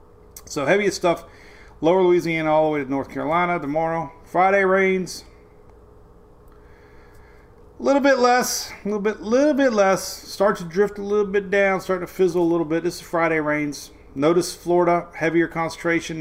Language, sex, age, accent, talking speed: English, male, 40-59, American, 170 wpm